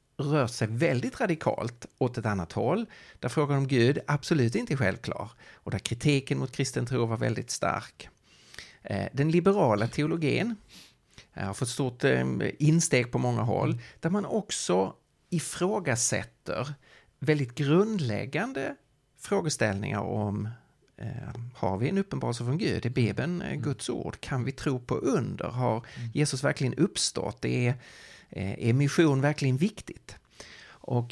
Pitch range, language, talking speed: 115-150 Hz, Swedish, 125 wpm